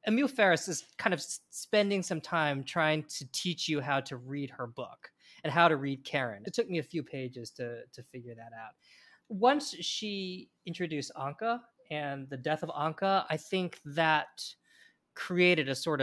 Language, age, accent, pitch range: English, 20-39, American, 130-170 Hz